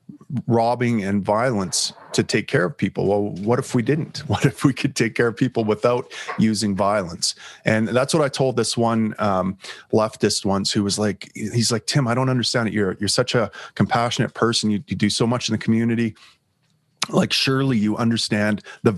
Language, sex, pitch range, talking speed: English, male, 105-130 Hz, 200 wpm